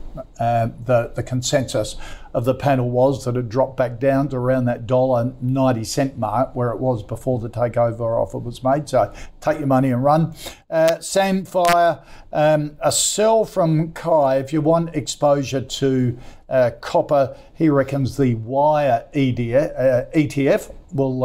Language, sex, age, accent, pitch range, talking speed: English, male, 50-69, Australian, 120-145 Hz, 160 wpm